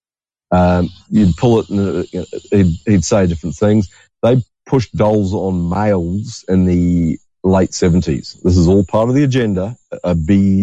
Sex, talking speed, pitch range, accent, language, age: male, 170 wpm, 85-105 Hz, Australian, Polish, 40-59